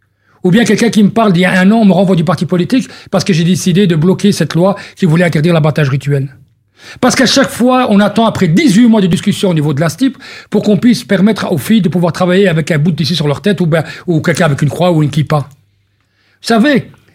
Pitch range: 150-210 Hz